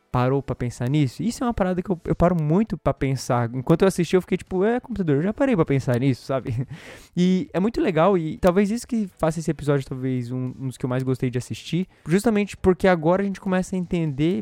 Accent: Brazilian